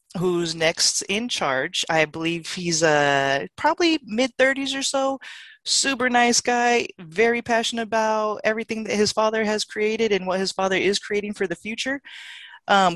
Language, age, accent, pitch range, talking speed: English, 20-39, American, 145-205 Hz, 155 wpm